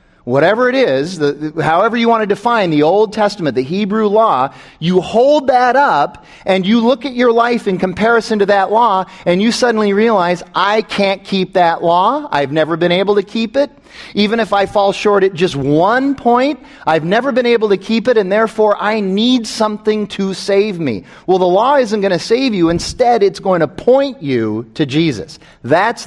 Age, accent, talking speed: 40-59, American, 200 wpm